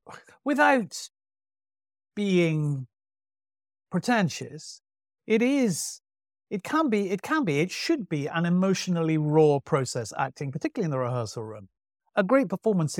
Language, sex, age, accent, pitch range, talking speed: English, male, 50-69, British, 135-200 Hz, 125 wpm